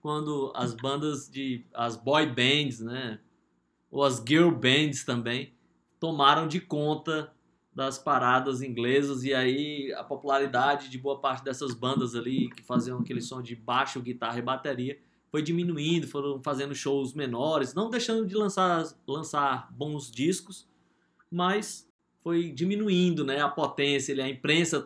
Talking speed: 140 wpm